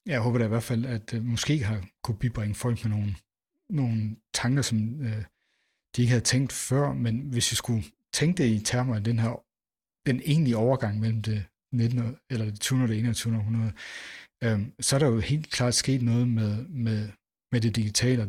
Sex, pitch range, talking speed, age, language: male, 110-125 Hz, 205 wpm, 60-79, Danish